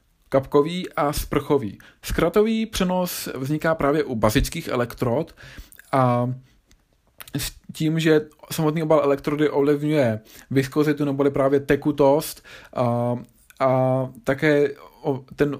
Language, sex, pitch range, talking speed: Czech, male, 130-150 Hz, 100 wpm